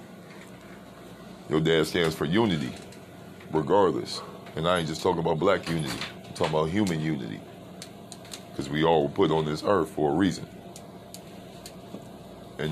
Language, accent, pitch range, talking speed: English, American, 80-95 Hz, 145 wpm